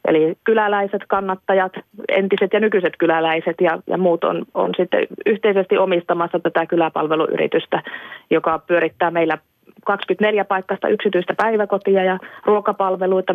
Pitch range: 170-200 Hz